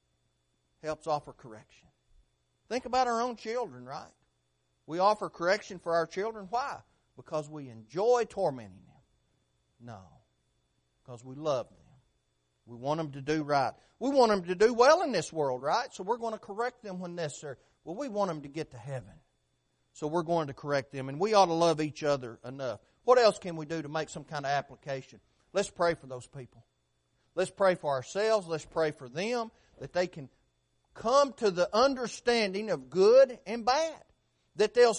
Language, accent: English, American